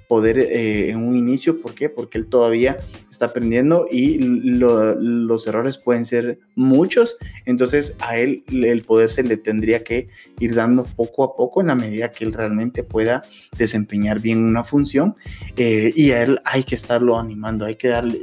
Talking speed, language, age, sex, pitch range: 180 wpm, Spanish, 20-39, male, 110-125 Hz